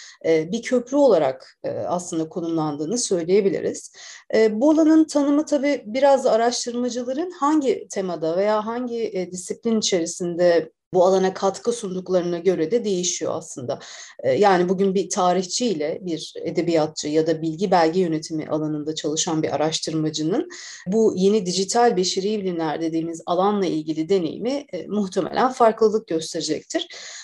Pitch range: 175-235 Hz